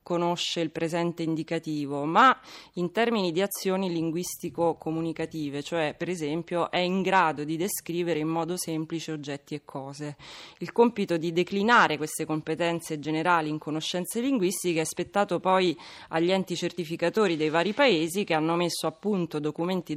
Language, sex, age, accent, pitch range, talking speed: Italian, female, 20-39, native, 155-185 Hz, 145 wpm